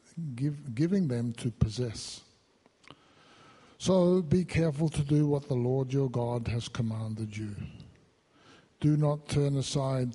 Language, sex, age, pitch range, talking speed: English, male, 60-79, 120-150 Hz, 125 wpm